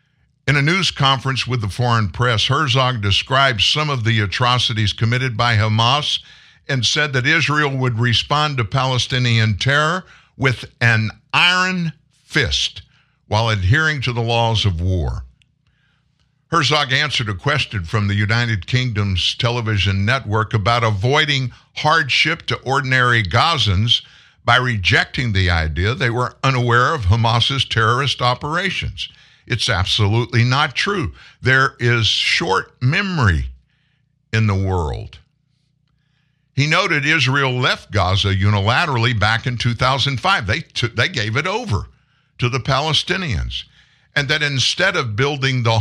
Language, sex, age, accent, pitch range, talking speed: English, male, 60-79, American, 110-140 Hz, 130 wpm